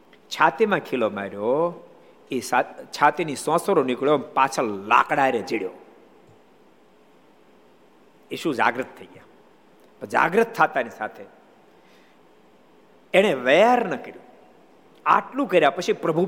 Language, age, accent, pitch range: Gujarati, 50-69, native, 170-265 Hz